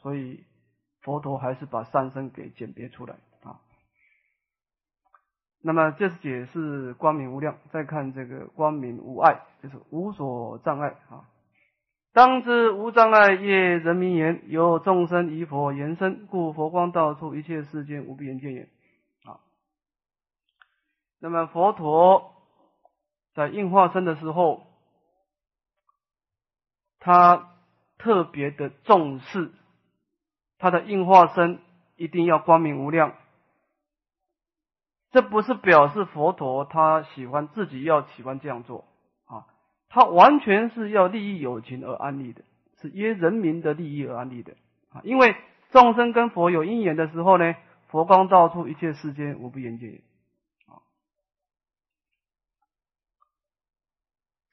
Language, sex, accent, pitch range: Chinese, male, native, 140-190 Hz